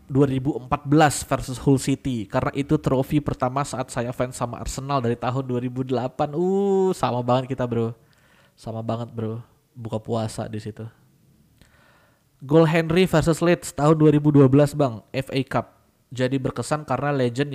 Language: Indonesian